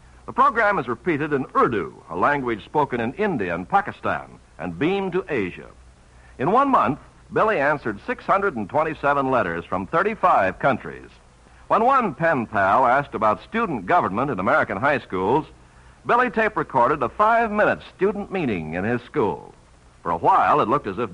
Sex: male